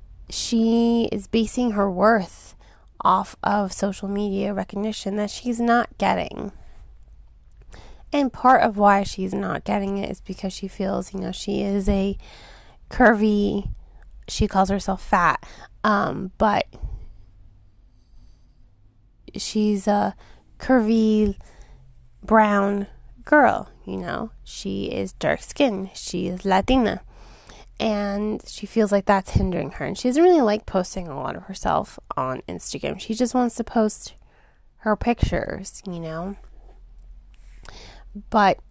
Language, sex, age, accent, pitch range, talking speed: English, female, 20-39, American, 170-215 Hz, 125 wpm